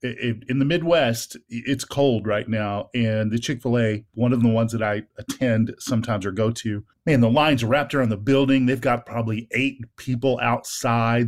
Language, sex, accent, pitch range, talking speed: English, male, American, 115-150 Hz, 195 wpm